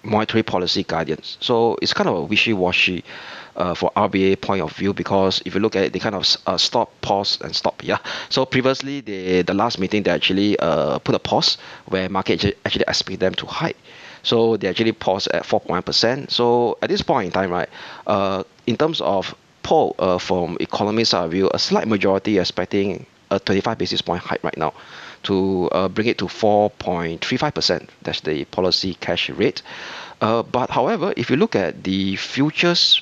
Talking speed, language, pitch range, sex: 185 wpm, English, 95-115 Hz, male